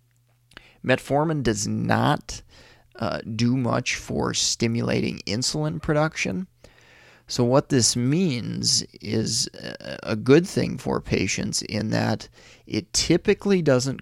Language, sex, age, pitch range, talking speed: English, male, 30-49, 115-125 Hz, 105 wpm